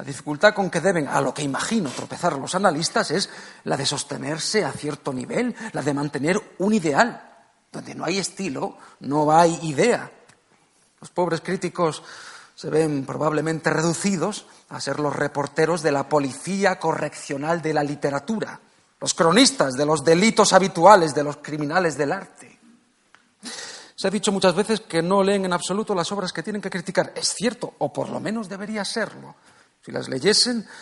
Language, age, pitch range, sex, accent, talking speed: Spanish, 40-59, 150-215 Hz, male, Spanish, 170 wpm